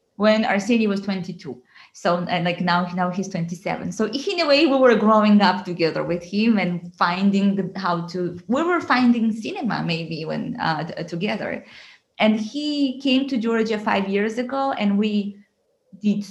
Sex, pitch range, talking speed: female, 195-250 Hz, 170 wpm